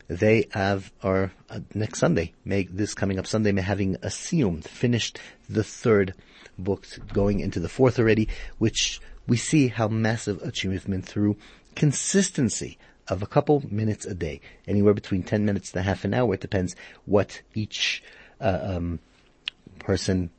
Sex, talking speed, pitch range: male, 155 wpm, 95-115 Hz